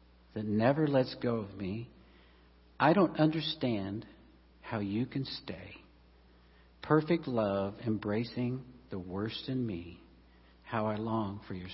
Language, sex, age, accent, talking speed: English, male, 60-79, American, 130 wpm